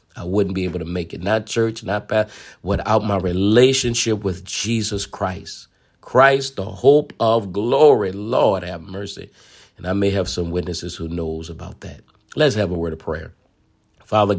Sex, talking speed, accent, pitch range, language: male, 175 wpm, American, 90-110 Hz, English